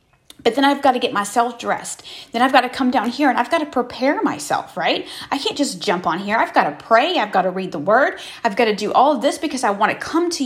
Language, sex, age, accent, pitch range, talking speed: English, female, 30-49, American, 195-270 Hz, 295 wpm